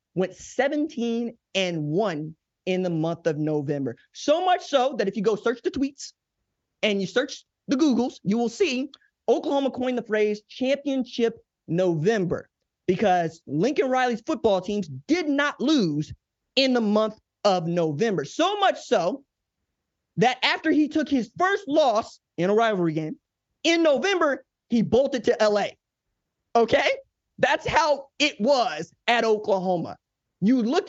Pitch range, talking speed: 190-275 Hz, 145 wpm